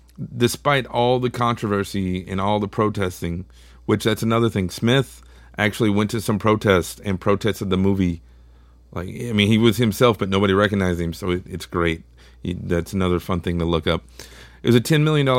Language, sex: English, male